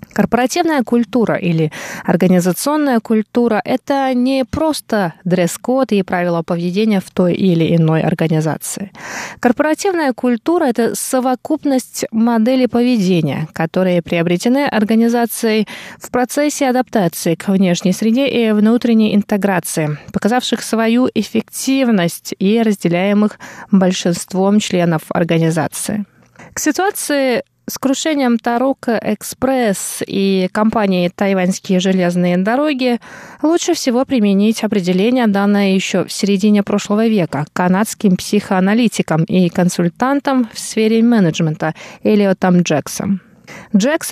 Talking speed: 100 wpm